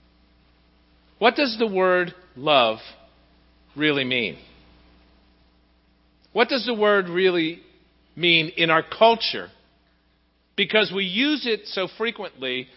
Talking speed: 105 wpm